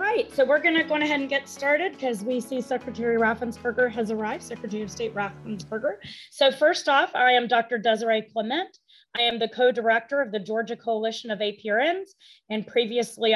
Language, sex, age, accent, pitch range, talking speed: English, female, 30-49, American, 220-265 Hz, 190 wpm